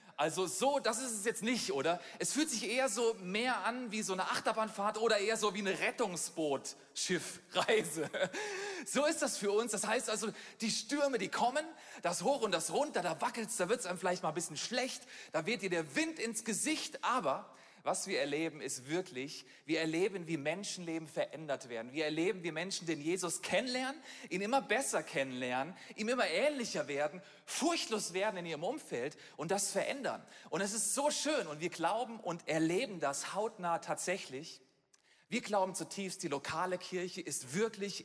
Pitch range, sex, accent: 175-240 Hz, male, German